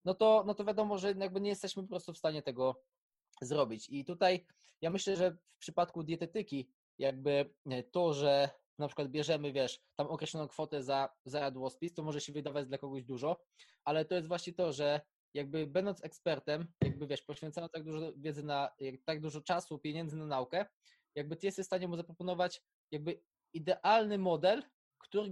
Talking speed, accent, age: 180 wpm, native, 20-39